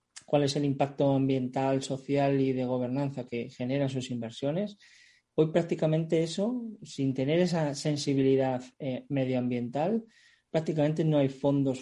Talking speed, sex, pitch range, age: 130 wpm, male, 125-150 Hz, 20-39